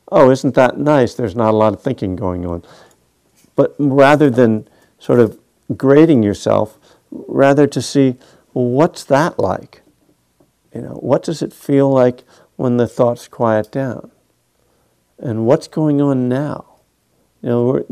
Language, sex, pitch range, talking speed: English, male, 95-135 Hz, 155 wpm